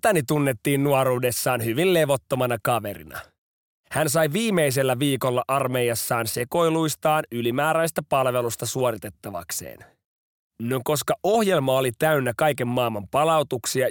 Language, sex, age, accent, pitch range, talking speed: Finnish, male, 30-49, native, 125-160 Hz, 100 wpm